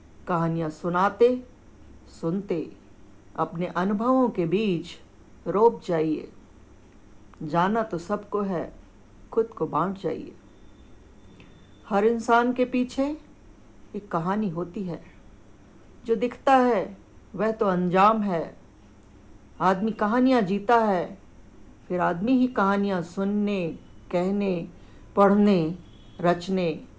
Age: 50-69